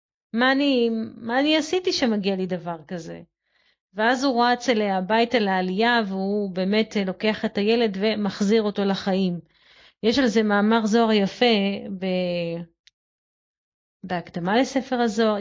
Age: 30-49